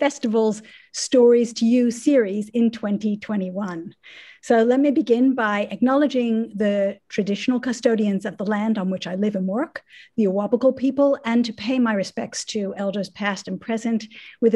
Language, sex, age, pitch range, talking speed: English, female, 50-69, 210-250 Hz, 160 wpm